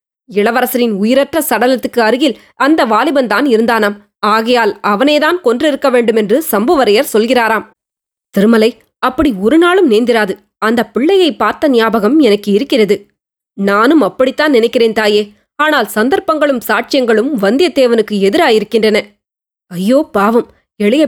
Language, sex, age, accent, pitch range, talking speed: Tamil, female, 20-39, native, 215-275 Hz, 105 wpm